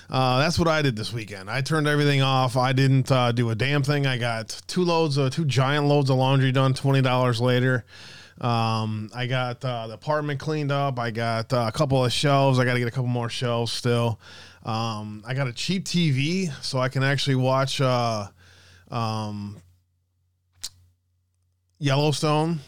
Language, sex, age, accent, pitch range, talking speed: English, male, 20-39, American, 115-140 Hz, 180 wpm